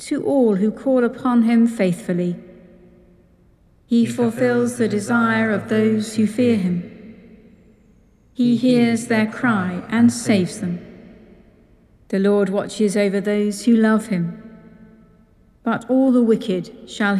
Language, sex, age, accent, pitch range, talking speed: English, female, 60-79, British, 200-235 Hz, 125 wpm